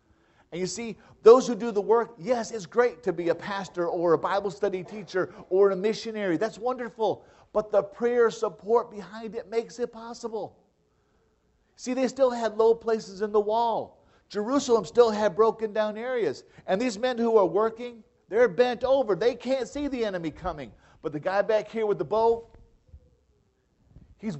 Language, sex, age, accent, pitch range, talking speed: English, male, 50-69, American, 155-225 Hz, 180 wpm